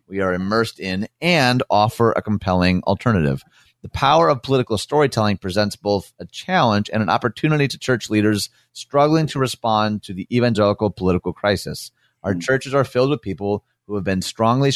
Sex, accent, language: male, American, English